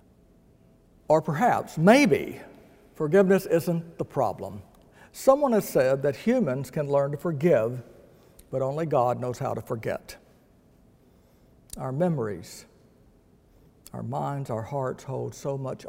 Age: 60-79